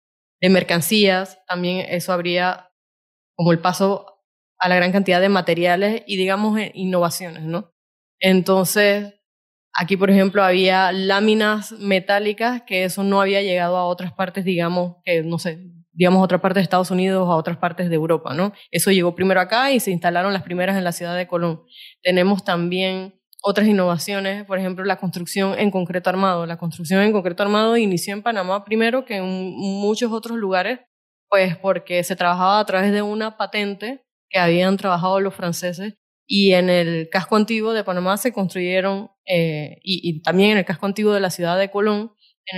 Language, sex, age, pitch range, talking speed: Spanish, female, 20-39, 180-200 Hz, 180 wpm